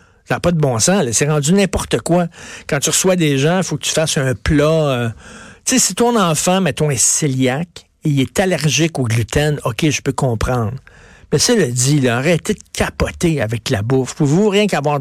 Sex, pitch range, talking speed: male, 140-180 Hz, 225 wpm